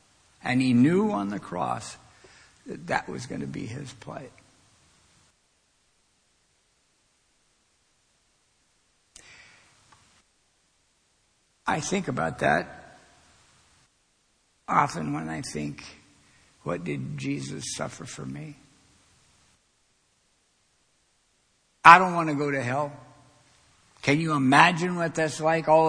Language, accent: English, American